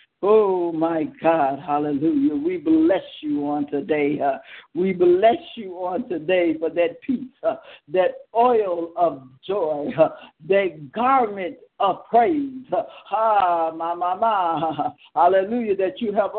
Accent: American